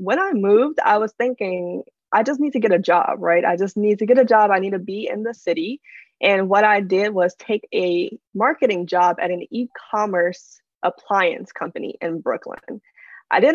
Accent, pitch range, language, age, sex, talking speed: American, 175-210 Hz, English, 20-39, female, 205 wpm